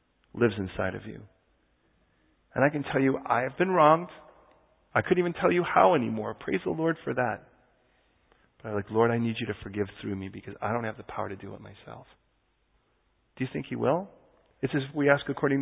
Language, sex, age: English, male, 40-59